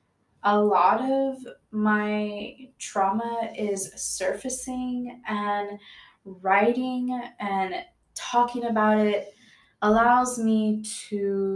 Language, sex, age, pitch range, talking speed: English, female, 10-29, 195-235 Hz, 85 wpm